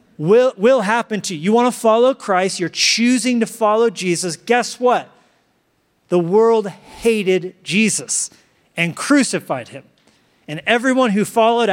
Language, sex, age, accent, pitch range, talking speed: English, male, 30-49, American, 170-225 Hz, 145 wpm